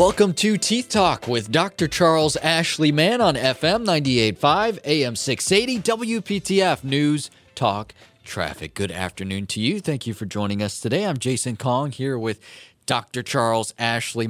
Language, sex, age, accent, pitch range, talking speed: English, male, 30-49, American, 110-160 Hz, 150 wpm